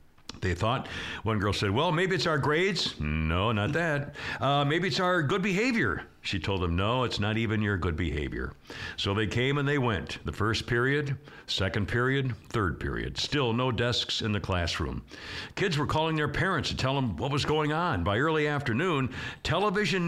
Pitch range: 105-150 Hz